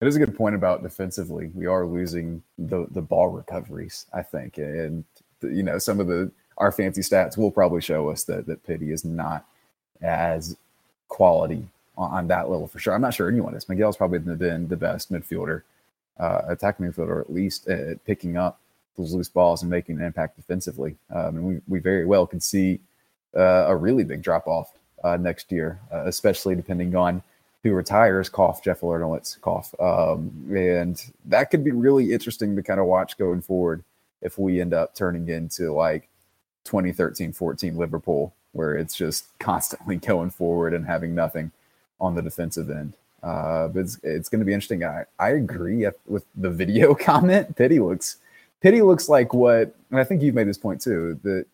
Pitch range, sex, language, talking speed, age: 85-100 Hz, male, English, 190 wpm, 30-49